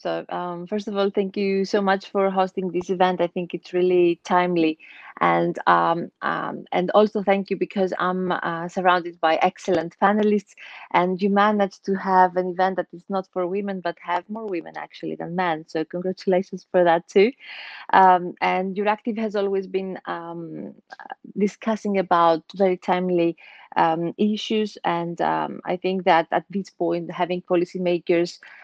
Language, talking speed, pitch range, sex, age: English, 170 wpm, 170-195 Hz, female, 30-49